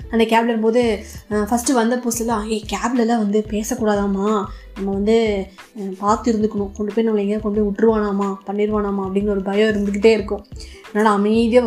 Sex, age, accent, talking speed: female, 20-39, native, 140 wpm